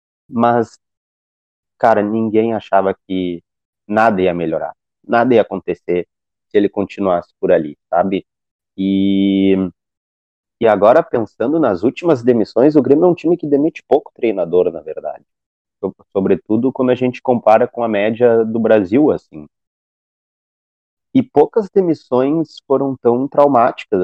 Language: Portuguese